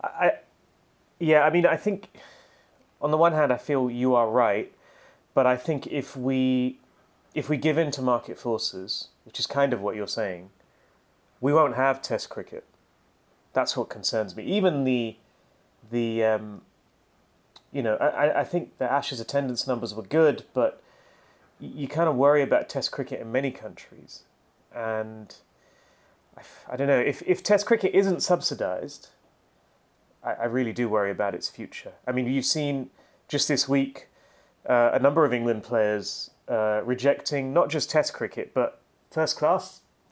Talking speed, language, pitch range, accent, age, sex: 165 wpm, English, 115-145 Hz, British, 30-49, male